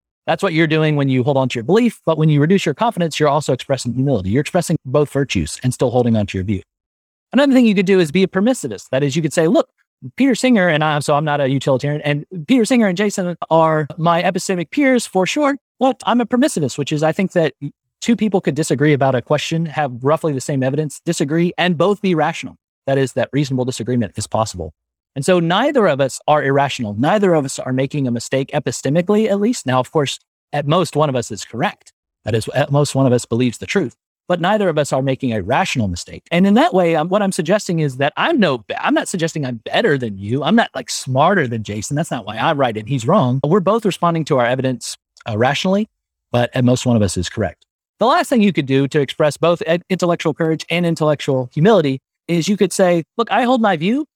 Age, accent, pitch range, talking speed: 30-49, American, 130-185 Hz, 245 wpm